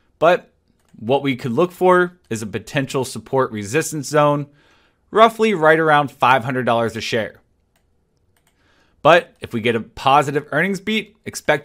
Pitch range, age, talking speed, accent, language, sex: 120-155 Hz, 30-49, 140 wpm, American, English, male